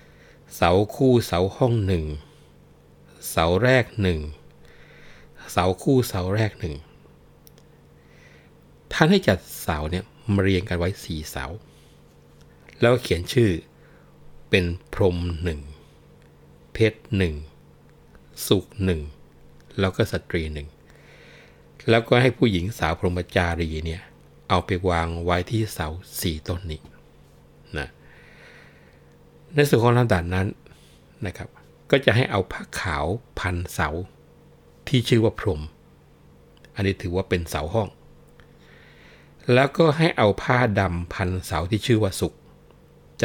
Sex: male